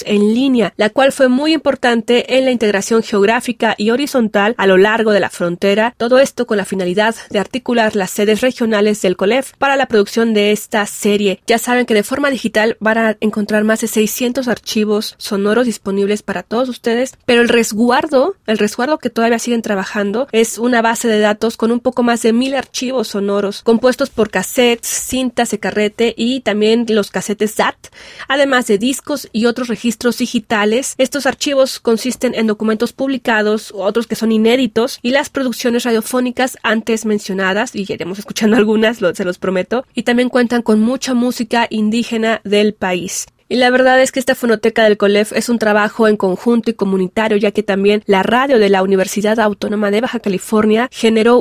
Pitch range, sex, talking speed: 210-245 Hz, female, 185 wpm